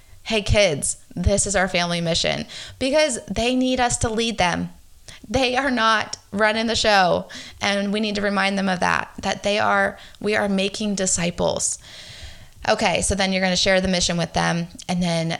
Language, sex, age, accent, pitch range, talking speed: English, female, 20-39, American, 170-205 Hz, 185 wpm